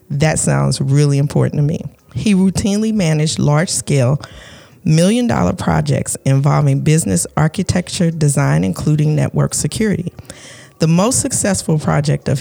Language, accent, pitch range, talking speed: English, American, 140-170 Hz, 125 wpm